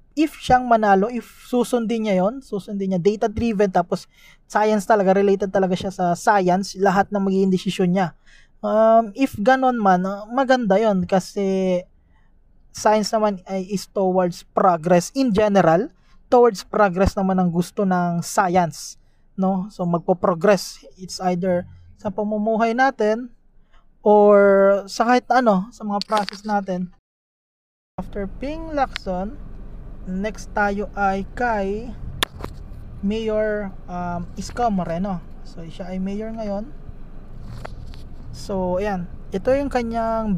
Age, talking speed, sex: 20-39, 120 wpm, male